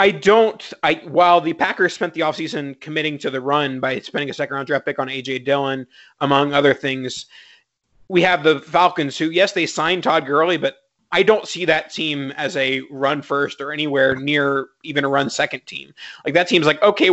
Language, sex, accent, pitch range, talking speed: English, male, American, 140-165 Hz, 205 wpm